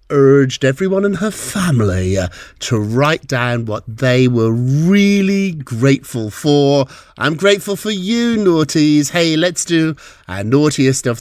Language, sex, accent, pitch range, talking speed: English, male, British, 130-175 Hz, 135 wpm